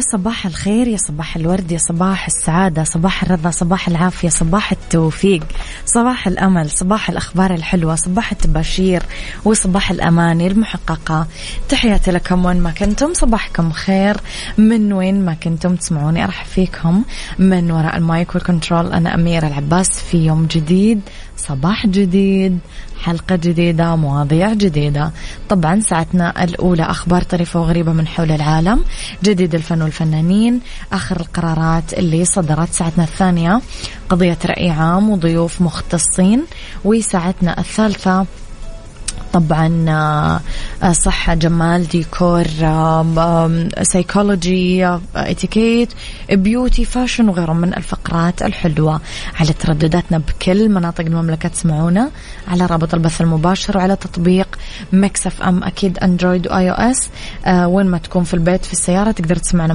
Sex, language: female, English